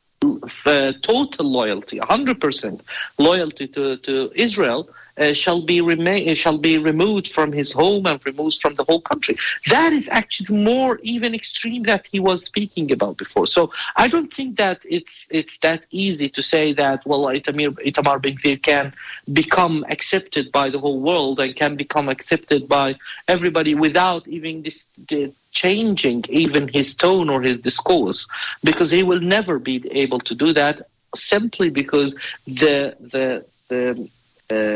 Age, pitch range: 50-69, 140-185 Hz